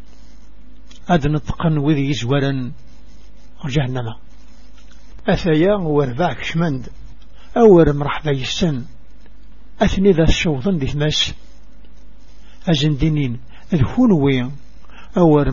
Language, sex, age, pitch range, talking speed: English, male, 60-79, 140-165 Hz, 65 wpm